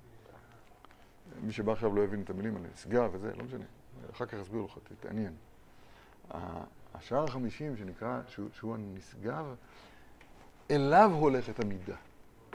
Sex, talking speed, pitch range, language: male, 125 wpm, 110-145 Hz, Hebrew